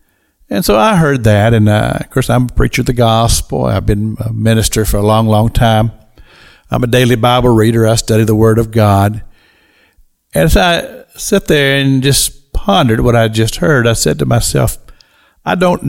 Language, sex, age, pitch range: English, male, 60-79, 110-145 Hz